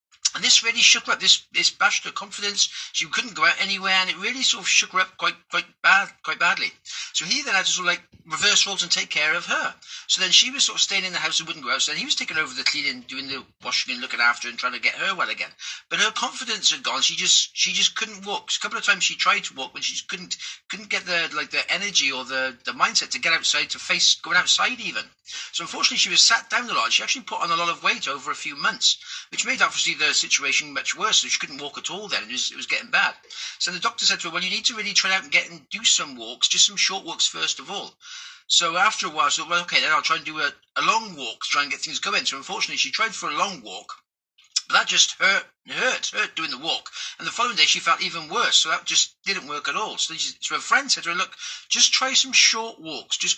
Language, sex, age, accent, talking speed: English, male, 40-59, British, 285 wpm